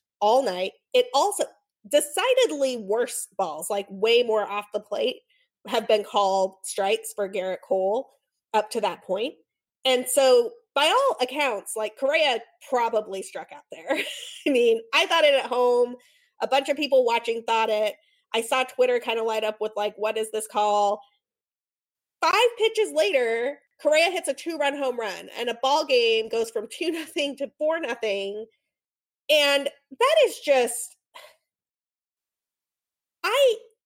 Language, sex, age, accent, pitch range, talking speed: English, female, 20-39, American, 215-345 Hz, 155 wpm